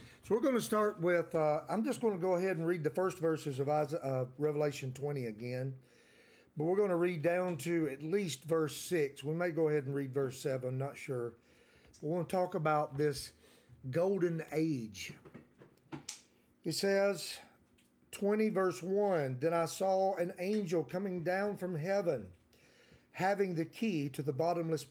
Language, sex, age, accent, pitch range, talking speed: English, male, 50-69, American, 135-185 Hz, 175 wpm